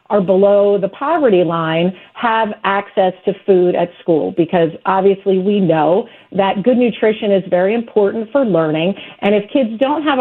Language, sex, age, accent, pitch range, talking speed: English, female, 40-59, American, 185-230 Hz, 165 wpm